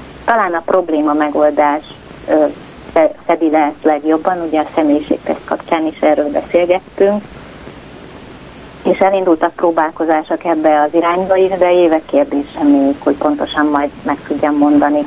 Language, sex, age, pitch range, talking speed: Hungarian, female, 30-49, 150-175 Hz, 125 wpm